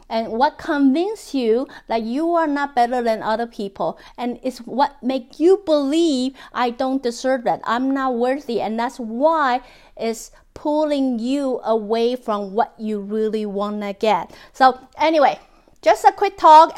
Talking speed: 160 wpm